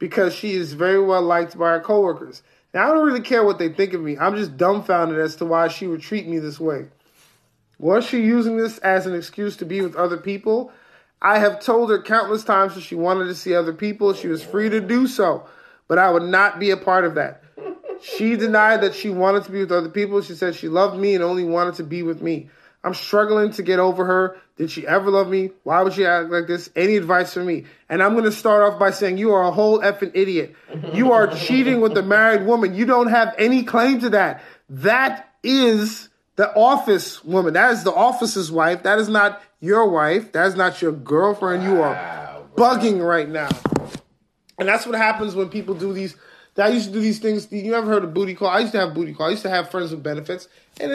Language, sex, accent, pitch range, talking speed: English, male, American, 180-220 Hz, 235 wpm